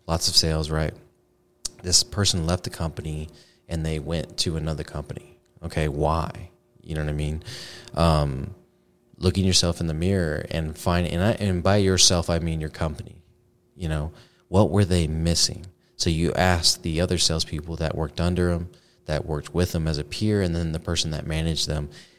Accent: American